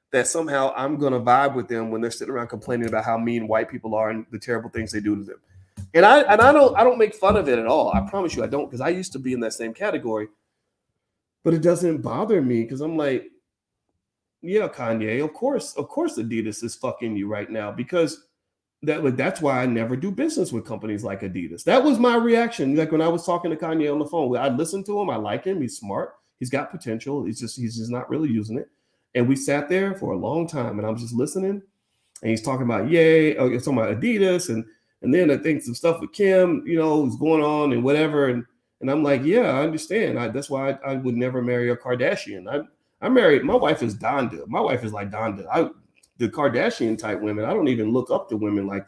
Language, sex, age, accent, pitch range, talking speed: English, male, 30-49, American, 115-160 Hz, 245 wpm